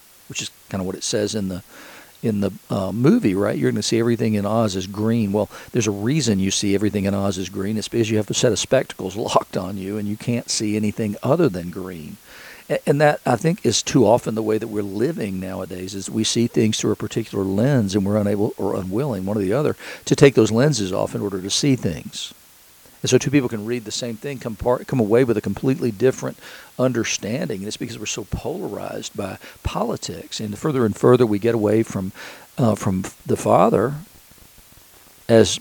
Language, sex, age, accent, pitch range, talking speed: English, male, 50-69, American, 100-120 Hz, 220 wpm